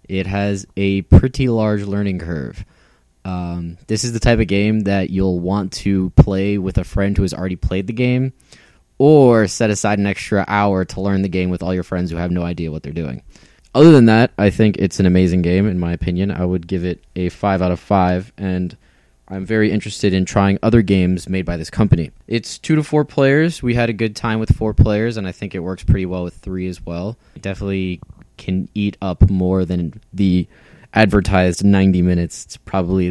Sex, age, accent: male, 20-39, American